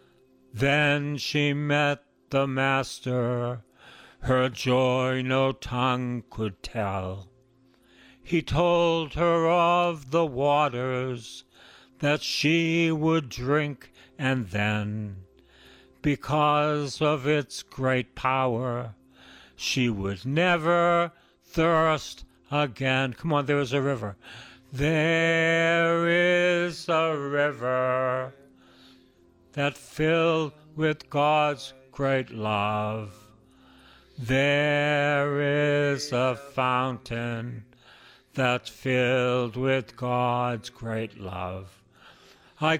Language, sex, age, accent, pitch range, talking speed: English, male, 60-79, American, 120-150 Hz, 85 wpm